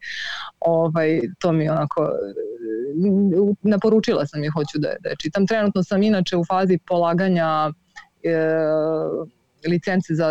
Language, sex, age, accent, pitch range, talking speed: Croatian, female, 20-39, native, 155-190 Hz, 130 wpm